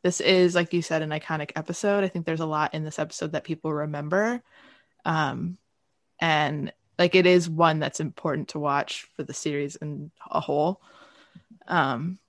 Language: English